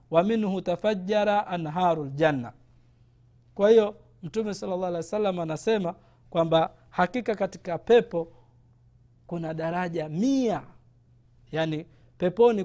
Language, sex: Swahili, male